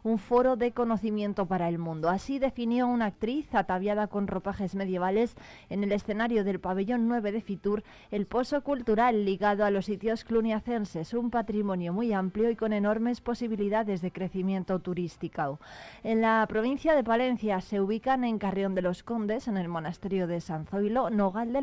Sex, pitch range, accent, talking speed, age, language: female, 190-230 Hz, Spanish, 170 wpm, 20-39, Spanish